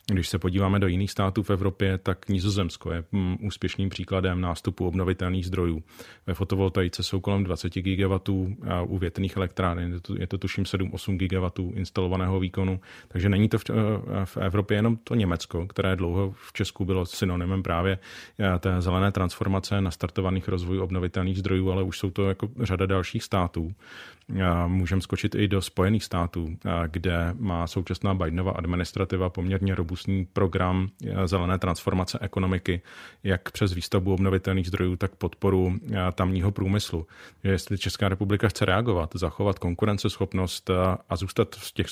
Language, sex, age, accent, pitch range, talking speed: Czech, male, 30-49, native, 90-100 Hz, 140 wpm